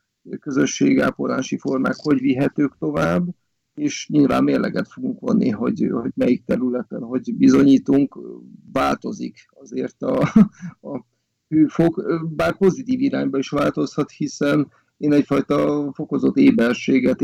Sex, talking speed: male, 100 wpm